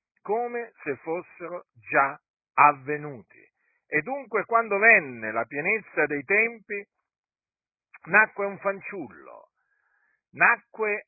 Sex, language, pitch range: male, Italian, 140-220 Hz